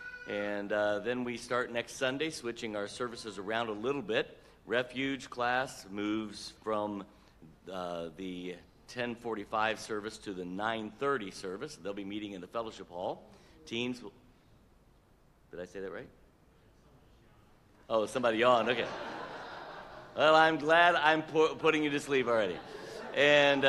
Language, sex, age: English, male, 50-69